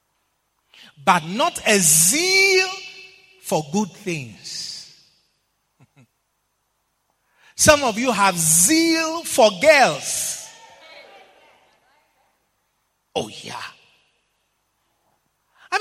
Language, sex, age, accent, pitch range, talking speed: English, male, 40-59, Nigerian, 185-290 Hz, 65 wpm